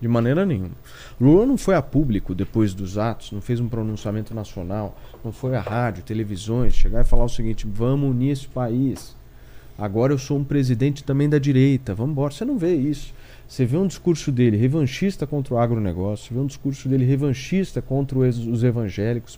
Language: Portuguese